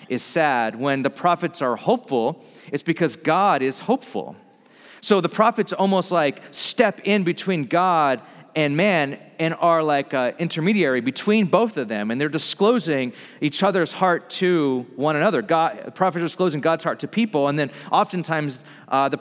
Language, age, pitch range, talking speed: English, 40-59, 140-185 Hz, 170 wpm